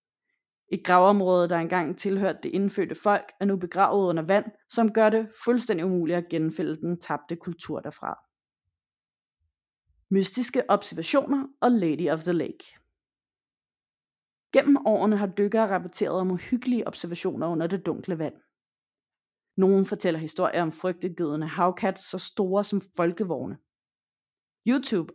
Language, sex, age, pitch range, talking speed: Danish, female, 30-49, 175-225 Hz, 130 wpm